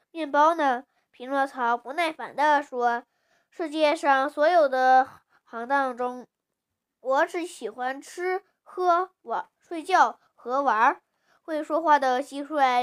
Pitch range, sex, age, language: 245-315 Hz, female, 10-29, Chinese